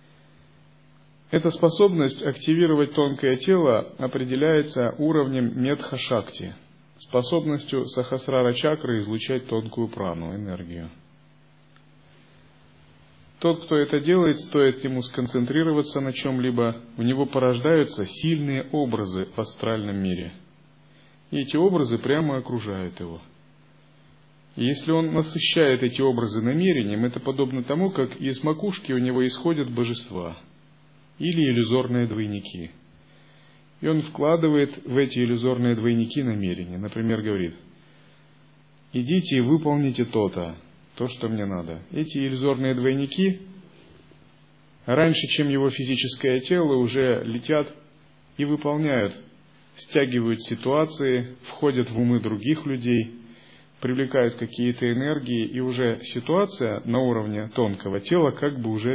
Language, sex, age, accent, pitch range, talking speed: Russian, male, 30-49, native, 115-150 Hz, 110 wpm